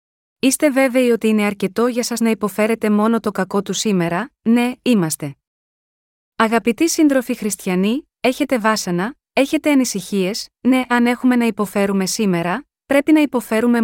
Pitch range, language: 200-245 Hz, Greek